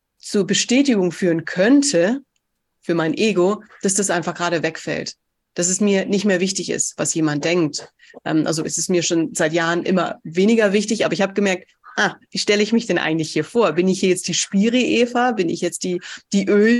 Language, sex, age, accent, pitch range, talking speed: German, female, 30-49, German, 165-200 Hz, 205 wpm